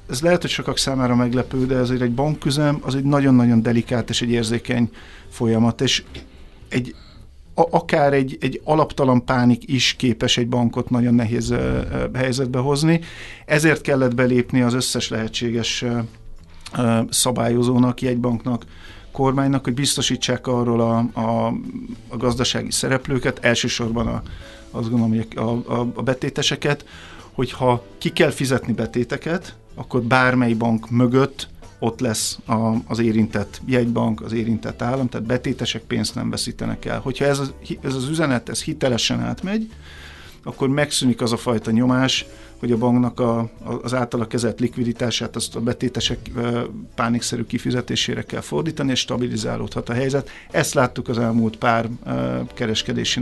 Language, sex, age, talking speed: Hungarian, male, 50-69, 145 wpm